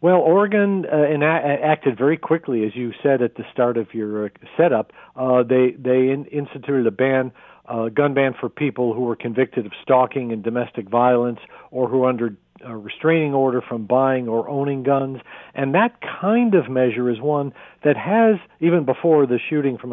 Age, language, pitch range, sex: 50-69, English, 120-145 Hz, male